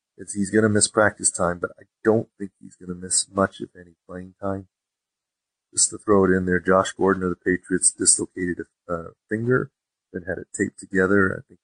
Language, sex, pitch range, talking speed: English, male, 90-110 Hz, 205 wpm